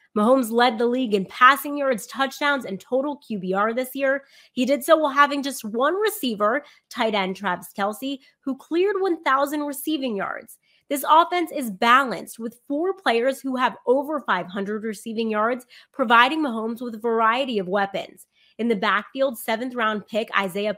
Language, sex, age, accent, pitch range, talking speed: English, female, 30-49, American, 225-285 Hz, 160 wpm